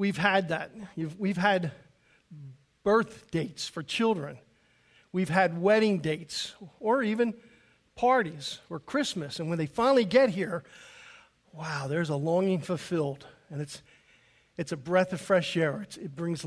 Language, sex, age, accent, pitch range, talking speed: English, male, 50-69, American, 160-210 Hz, 145 wpm